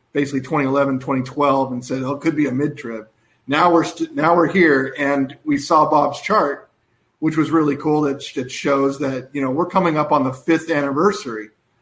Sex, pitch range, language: male, 130-155 Hz, English